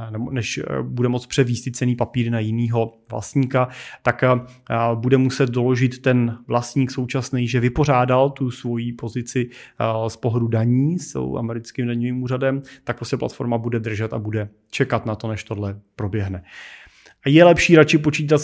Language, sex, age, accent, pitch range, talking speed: Czech, male, 30-49, native, 120-140 Hz, 150 wpm